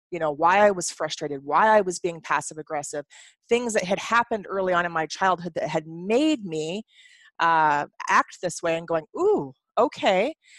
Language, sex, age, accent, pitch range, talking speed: English, female, 30-49, American, 170-220 Hz, 185 wpm